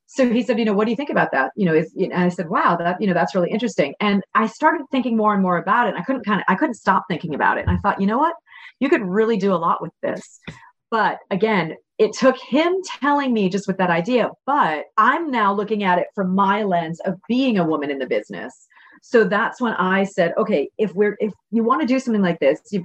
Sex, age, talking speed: female, 30-49, 265 wpm